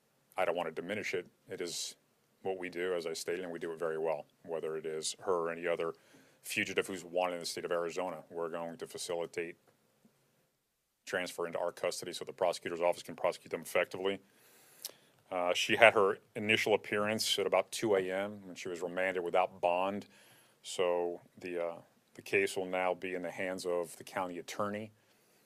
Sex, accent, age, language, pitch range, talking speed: male, American, 40-59, English, 85-95 Hz, 195 wpm